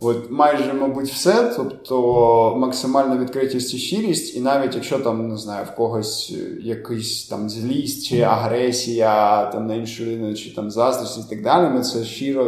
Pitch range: 110-130 Hz